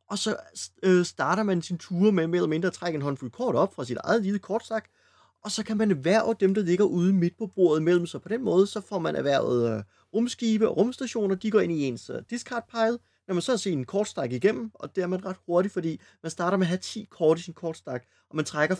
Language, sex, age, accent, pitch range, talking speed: Danish, male, 30-49, native, 145-200 Hz, 260 wpm